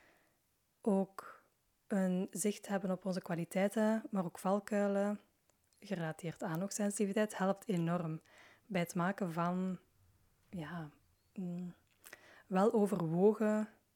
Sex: female